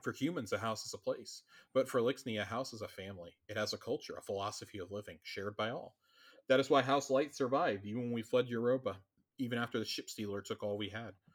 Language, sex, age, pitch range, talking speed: English, male, 30-49, 105-130 Hz, 240 wpm